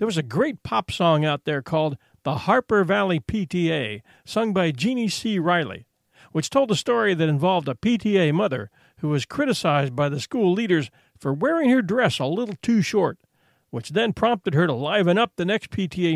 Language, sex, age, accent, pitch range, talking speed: English, male, 50-69, American, 145-200 Hz, 195 wpm